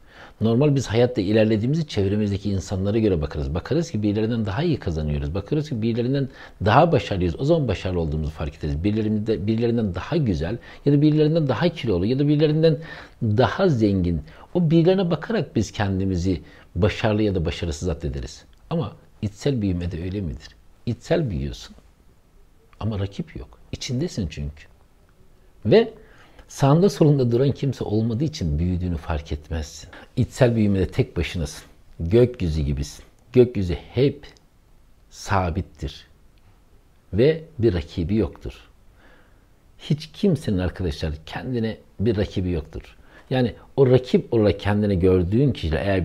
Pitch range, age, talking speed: 85-125 Hz, 60-79, 130 wpm